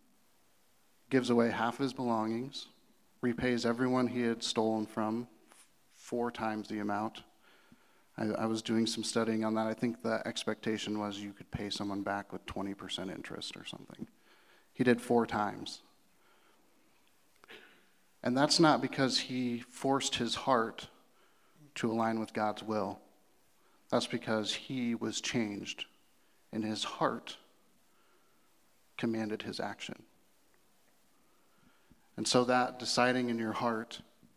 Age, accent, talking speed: 40-59, American, 130 wpm